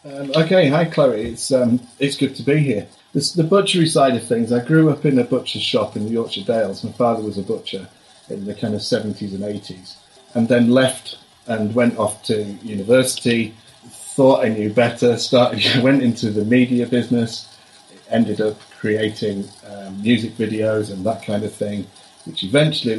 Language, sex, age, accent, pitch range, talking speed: English, male, 40-59, British, 105-130 Hz, 185 wpm